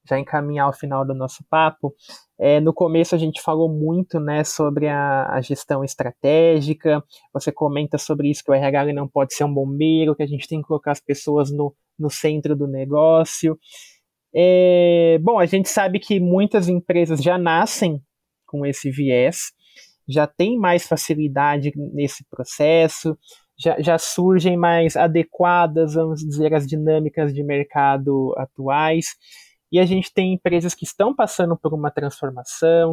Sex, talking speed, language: male, 155 wpm, Portuguese